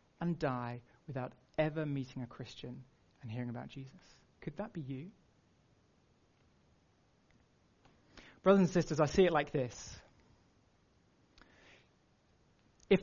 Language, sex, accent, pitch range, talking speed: English, male, British, 165-245 Hz, 110 wpm